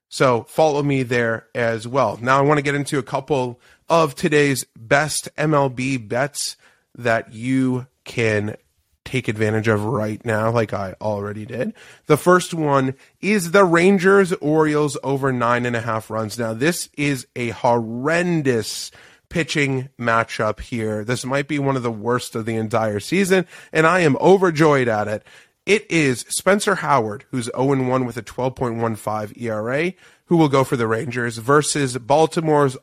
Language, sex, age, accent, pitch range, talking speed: English, male, 30-49, American, 115-150 Hz, 160 wpm